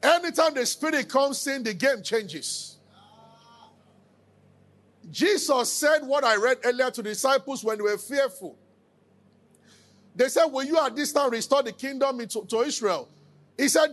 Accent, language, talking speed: Nigerian, English, 155 wpm